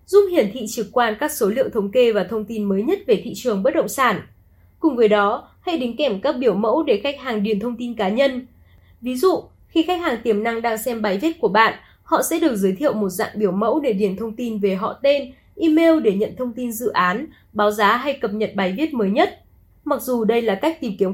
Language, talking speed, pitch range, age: Vietnamese, 255 wpm, 210-300 Hz, 20-39